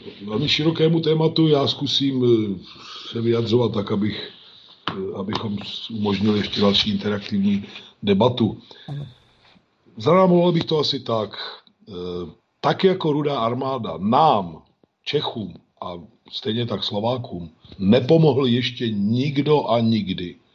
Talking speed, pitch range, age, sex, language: 100 wpm, 110-150 Hz, 50-69, male, Slovak